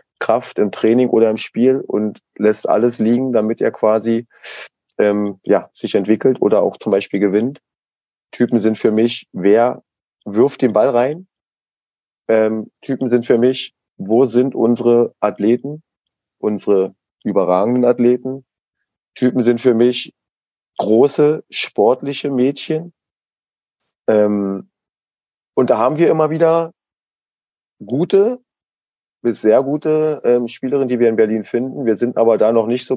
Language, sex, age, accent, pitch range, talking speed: German, male, 30-49, German, 110-130 Hz, 135 wpm